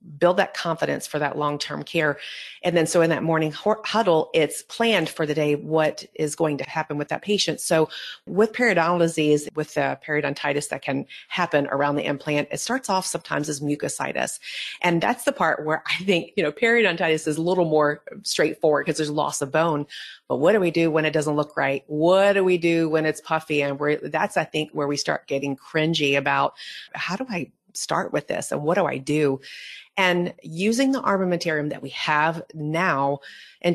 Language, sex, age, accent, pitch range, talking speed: English, female, 40-59, American, 150-180 Hz, 200 wpm